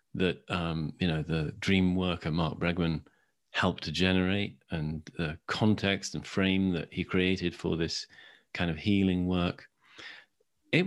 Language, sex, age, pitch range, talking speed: English, male, 40-59, 90-105 Hz, 150 wpm